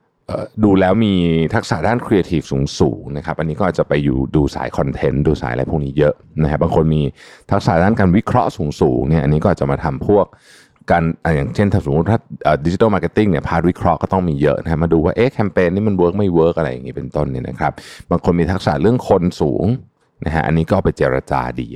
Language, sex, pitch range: Thai, male, 75-105 Hz